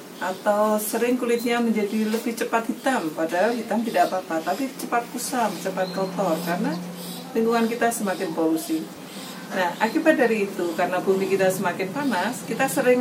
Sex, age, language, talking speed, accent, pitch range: female, 40-59, Indonesian, 150 wpm, native, 185-235 Hz